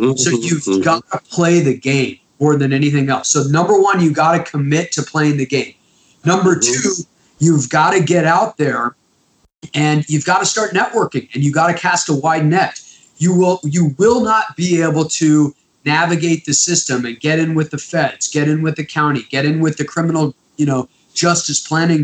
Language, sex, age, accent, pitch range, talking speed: English, male, 30-49, American, 145-175 Hz, 205 wpm